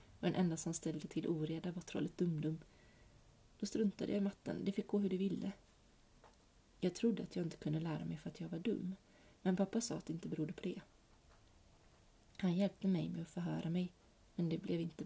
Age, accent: 30-49, native